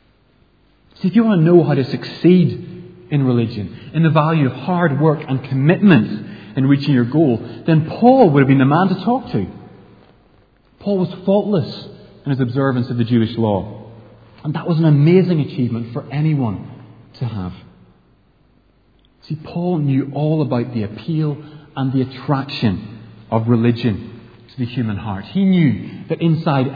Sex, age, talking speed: male, 30-49, 165 wpm